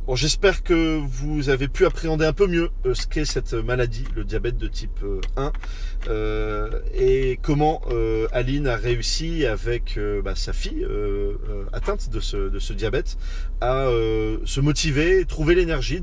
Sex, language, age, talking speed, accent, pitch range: male, French, 30-49, 170 wpm, French, 105-145 Hz